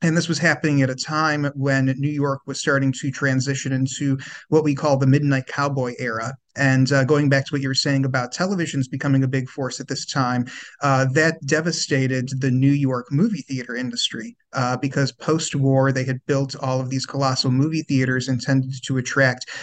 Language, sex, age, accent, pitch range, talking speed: English, male, 30-49, American, 130-145 Hz, 195 wpm